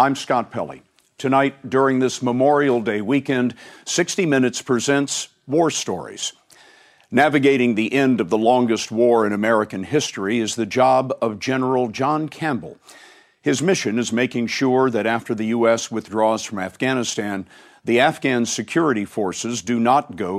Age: 50-69